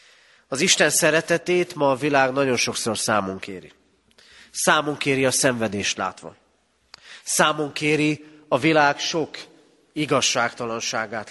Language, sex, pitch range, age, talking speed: Hungarian, male, 110-145 Hz, 30-49, 110 wpm